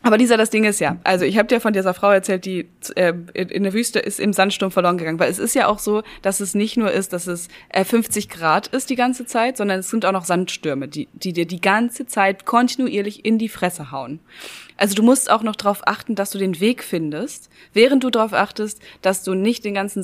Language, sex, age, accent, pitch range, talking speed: German, female, 20-39, German, 185-225 Hz, 240 wpm